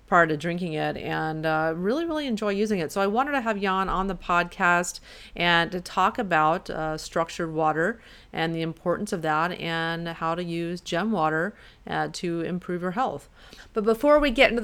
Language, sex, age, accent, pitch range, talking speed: English, female, 30-49, American, 165-195 Hz, 195 wpm